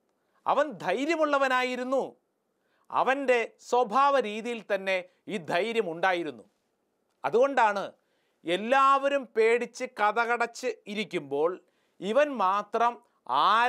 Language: English